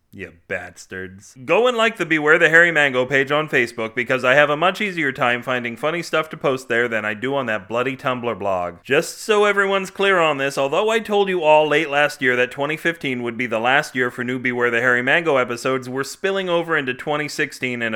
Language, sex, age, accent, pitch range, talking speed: English, male, 30-49, American, 120-165 Hz, 225 wpm